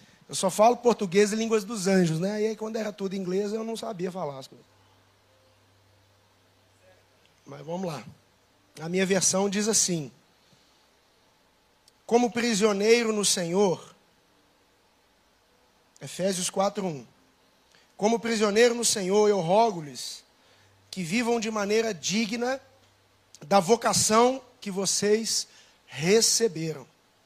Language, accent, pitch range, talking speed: Portuguese, Brazilian, 175-225 Hz, 110 wpm